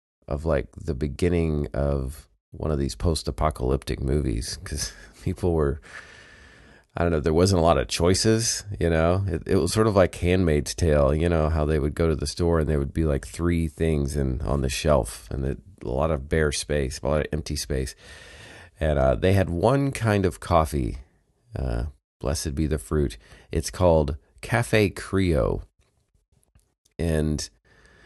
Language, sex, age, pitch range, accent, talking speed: English, male, 30-49, 70-95 Hz, American, 170 wpm